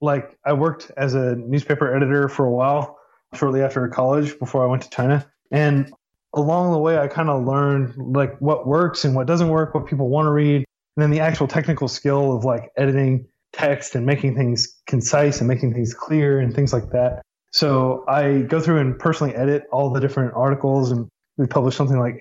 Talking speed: 210 wpm